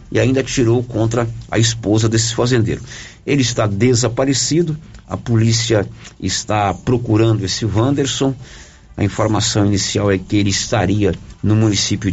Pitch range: 100-125 Hz